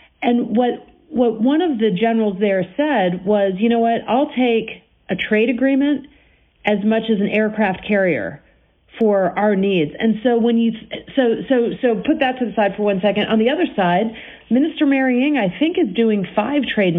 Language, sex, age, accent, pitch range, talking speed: English, female, 50-69, American, 190-245 Hz, 200 wpm